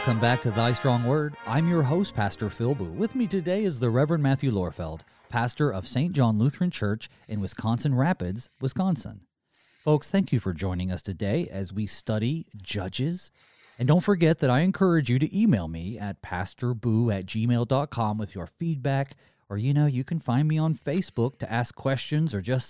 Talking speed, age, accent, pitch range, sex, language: 190 wpm, 30-49, American, 110-155 Hz, male, English